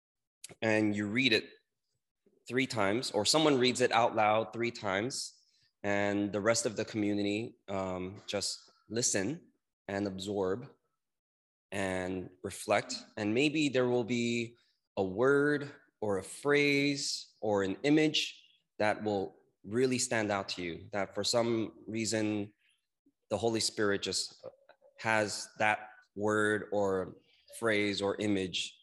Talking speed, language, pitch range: 130 wpm, English, 100-125 Hz